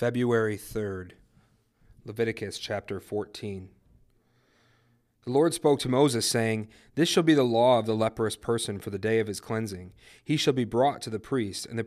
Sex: male